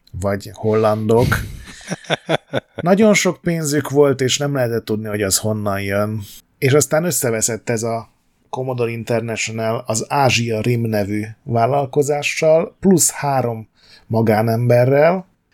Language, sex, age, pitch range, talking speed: Hungarian, male, 30-49, 105-140 Hz, 110 wpm